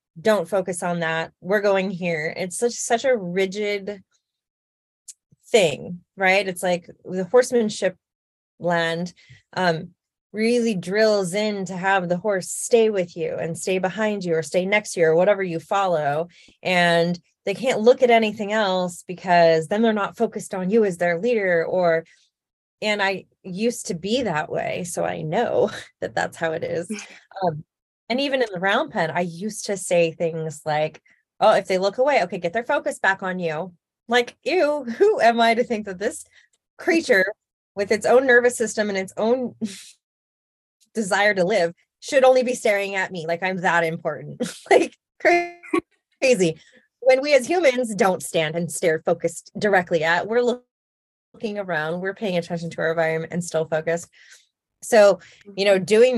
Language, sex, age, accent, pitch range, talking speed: English, female, 20-39, American, 170-225 Hz, 170 wpm